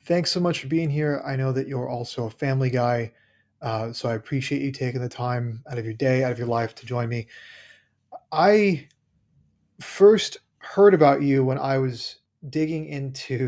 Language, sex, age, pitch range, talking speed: English, male, 30-49, 125-150 Hz, 190 wpm